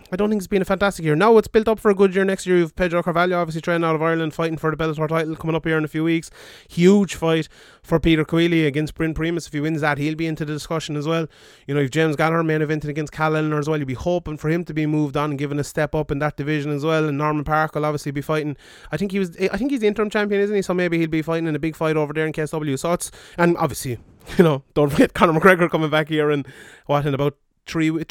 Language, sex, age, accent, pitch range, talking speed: English, male, 20-39, Irish, 150-180 Hz, 295 wpm